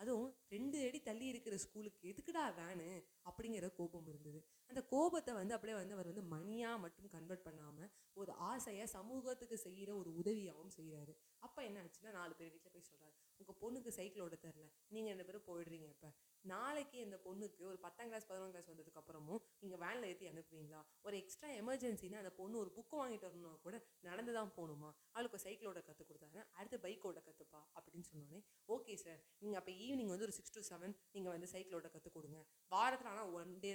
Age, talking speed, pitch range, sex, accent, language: 20-39, 180 wpm, 170-220 Hz, female, native, Tamil